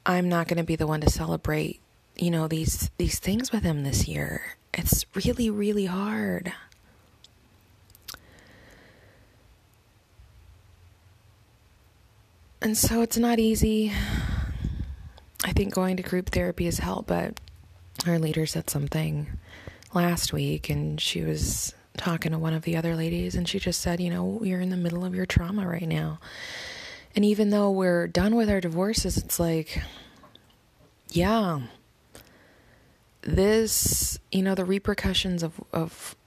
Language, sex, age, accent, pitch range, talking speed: English, female, 20-39, American, 130-190 Hz, 140 wpm